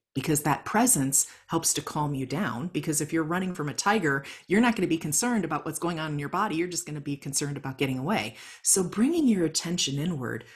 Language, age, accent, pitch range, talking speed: English, 40-59, American, 145-190 Hz, 240 wpm